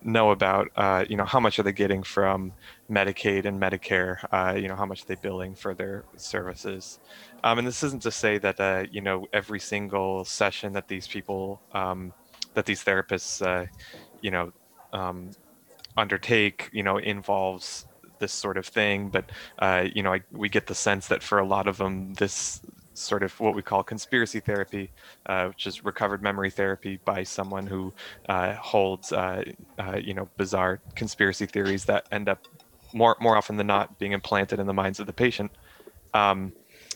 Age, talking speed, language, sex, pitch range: 20-39, 185 wpm, English, male, 95-105 Hz